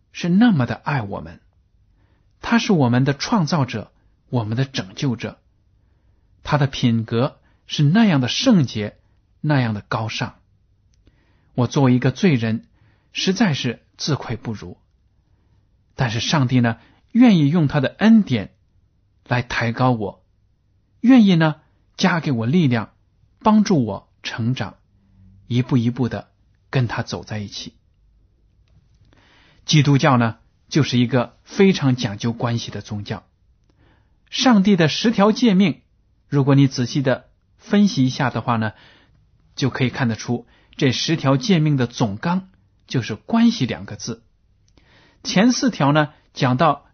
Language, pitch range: Chinese, 100-140 Hz